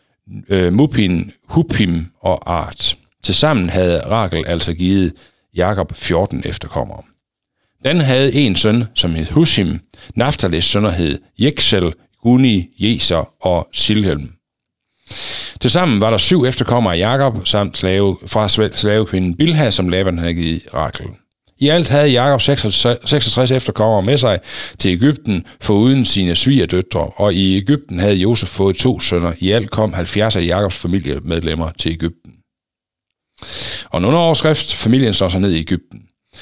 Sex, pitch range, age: male, 90-125 Hz, 60-79